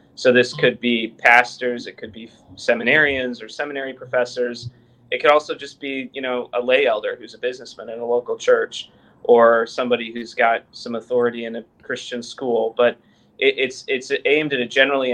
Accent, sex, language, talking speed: American, male, English, 185 wpm